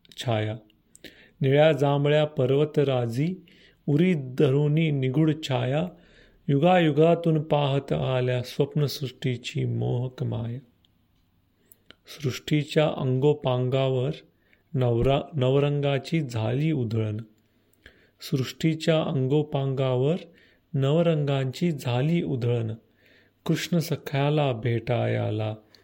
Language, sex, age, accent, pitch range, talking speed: Marathi, male, 40-59, native, 120-150 Hz, 65 wpm